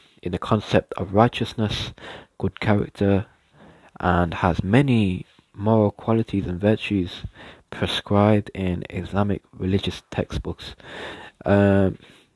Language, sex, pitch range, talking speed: English, male, 90-110 Hz, 90 wpm